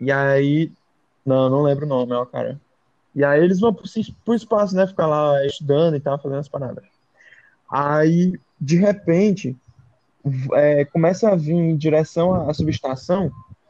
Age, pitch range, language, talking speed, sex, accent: 20-39, 140-195 Hz, Portuguese, 155 wpm, male, Brazilian